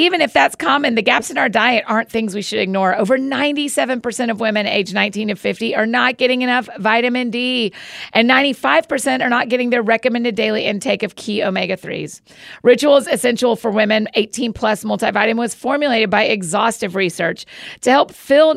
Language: English